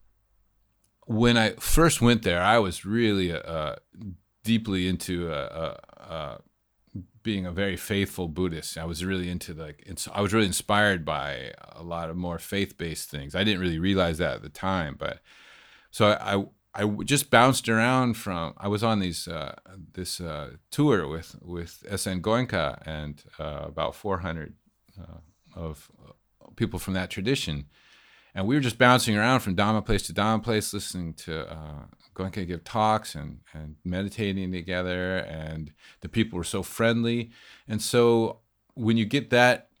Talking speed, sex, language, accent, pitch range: 165 wpm, male, English, American, 85-110 Hz